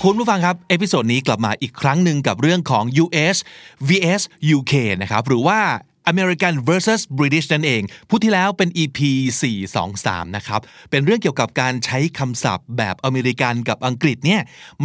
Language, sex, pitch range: Thai, male, 115-175 Hz